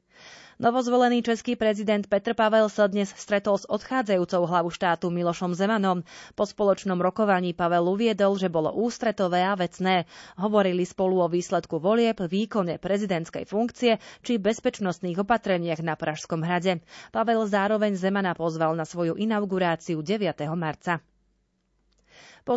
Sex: female